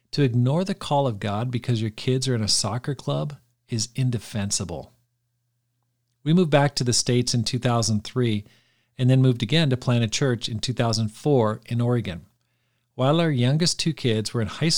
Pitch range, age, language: 115-135 Hz, 50-69, English